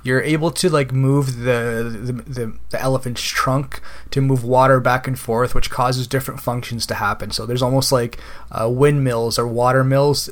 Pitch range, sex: 115-135 Hz, male